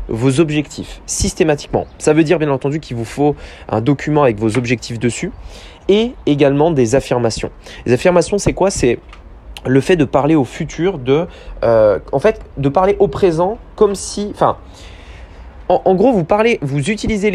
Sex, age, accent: male, 20-39, French